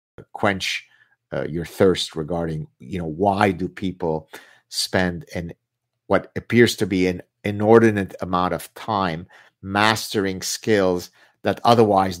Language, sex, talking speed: English, male, 125 wpm